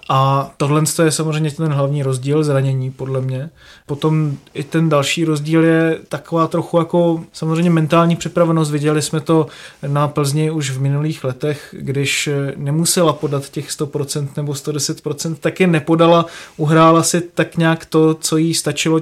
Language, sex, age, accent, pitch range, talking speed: Czech, male, 20-39, native, 145-165 Hz, 155 wpm